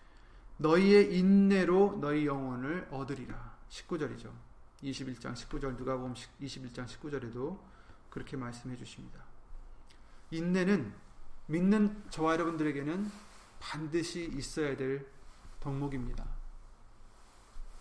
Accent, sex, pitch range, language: native, male, 130-165 Hz, Korean